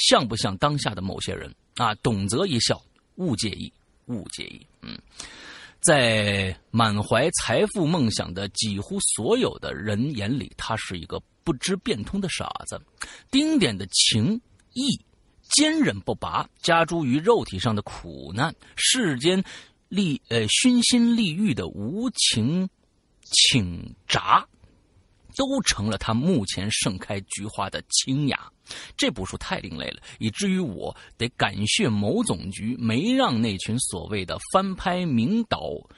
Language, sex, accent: Chinese, male, native